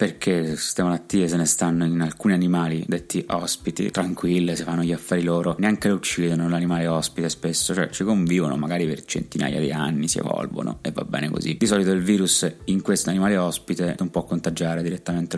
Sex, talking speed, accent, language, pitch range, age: male, 190 wpm, native, Italian, 85-95 Hz, 20-39